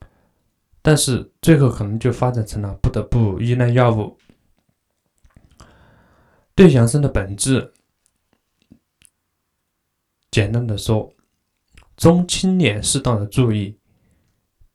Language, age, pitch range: Chinese, 20-39, 105-135 Hz